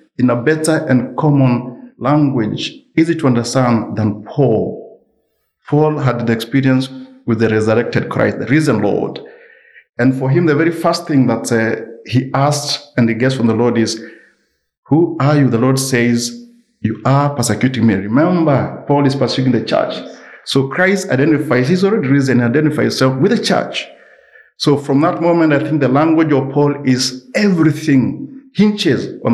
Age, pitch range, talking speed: 50-69, 120-150 Hz, 170 wpm